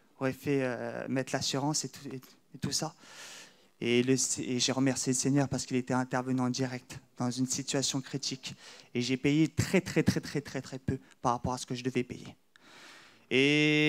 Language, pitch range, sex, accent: French, 135-175 Hz, male, French